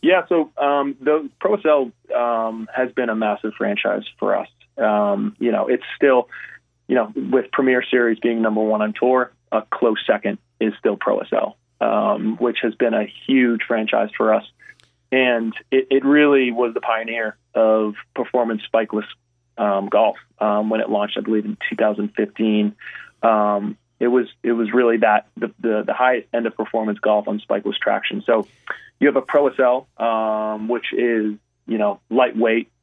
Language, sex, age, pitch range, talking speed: English, male, 30-49, 110-125 Hz, 170 wpm